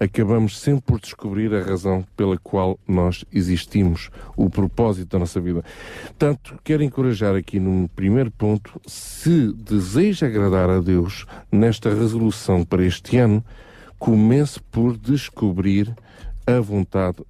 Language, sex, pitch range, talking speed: Portuguese, male, 95-125 Hz, 130 wpm